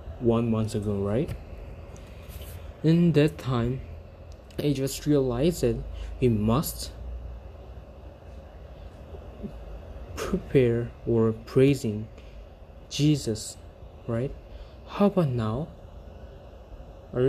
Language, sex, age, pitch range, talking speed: English, male, 20-39, 75-120 Hz, 75 wpm